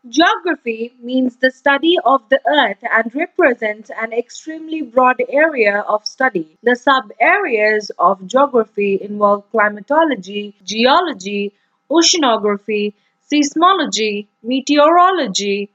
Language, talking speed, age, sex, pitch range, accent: English, 100 wpm, 30-49, female, 215-295 Hz, Indian